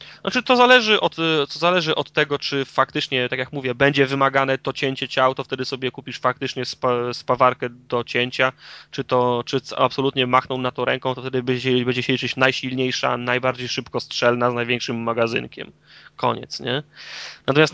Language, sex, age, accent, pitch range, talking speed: Polish, male, 20-39, native, 125-150 Hz, 170 wpm